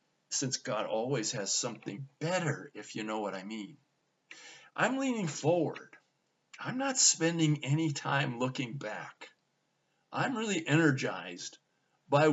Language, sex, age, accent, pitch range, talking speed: English, male, 50-69, American, 115-155 Hz, 125 wpm